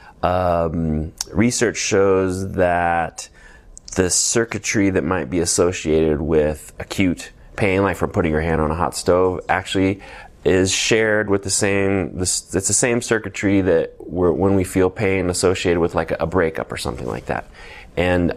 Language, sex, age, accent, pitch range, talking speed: English, male, 20-39, American, 80-95 Hz, 160 wpm